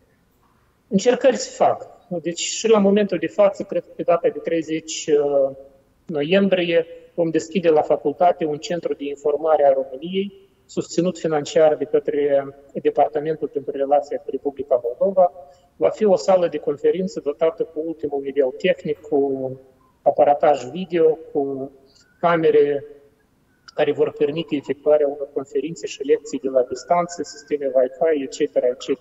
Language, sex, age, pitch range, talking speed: Romanian, male, 30-49, 145-210 Hz, 140 wpm